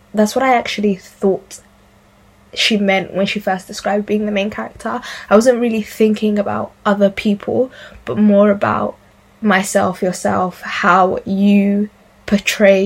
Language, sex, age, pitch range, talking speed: English, female, 10-29, 195-215 Hz, 140 wpm